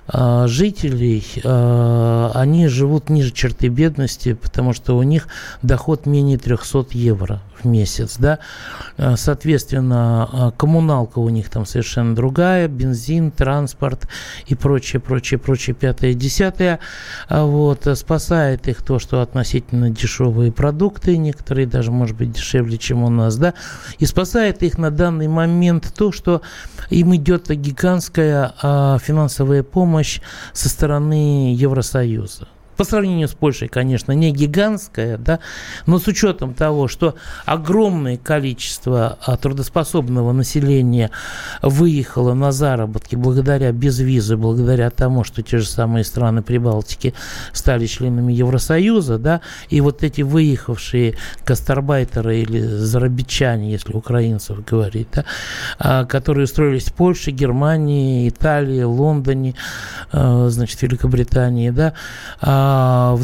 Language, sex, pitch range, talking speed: Russian, male, 120-150 Hz, 115 wpm